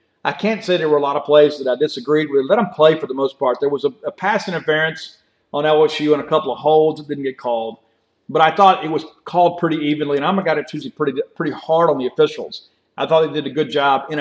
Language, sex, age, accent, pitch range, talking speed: English, male, 40-59, American, 140-165 Hz, 275 wpm